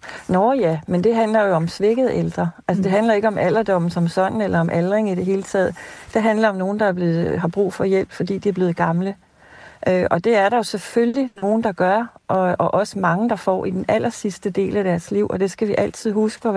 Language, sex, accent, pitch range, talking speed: Danish, female, native, 180-215 Hz, 250 wpm